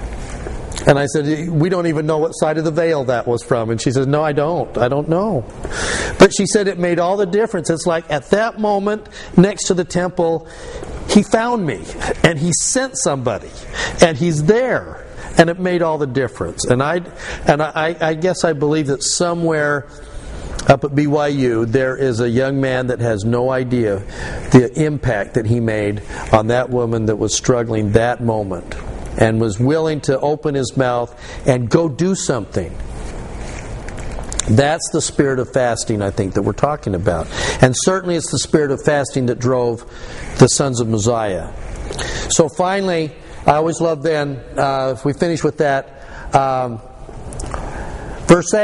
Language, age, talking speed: English, 50-69, 175 wpm